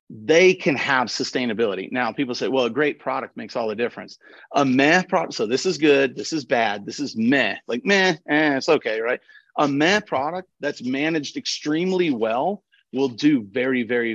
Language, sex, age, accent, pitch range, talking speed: English, male, 40-59, American, 125-185 Hz, 190 wpm